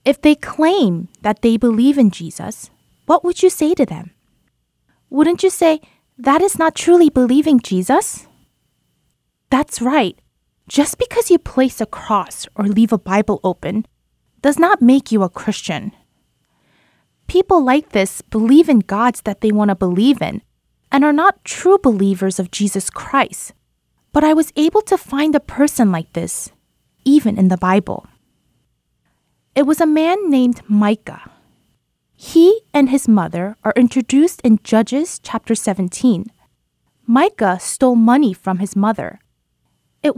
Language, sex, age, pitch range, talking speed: English, female, 20-39, 205-295 Hz, 145 wpm